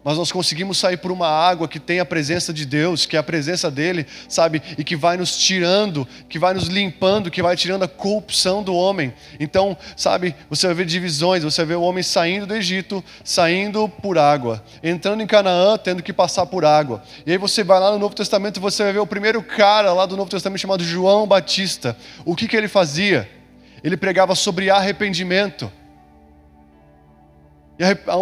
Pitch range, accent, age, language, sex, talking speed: 170-210 Hz, Brazilian, 20-39, Portuguese, male, 195 wpm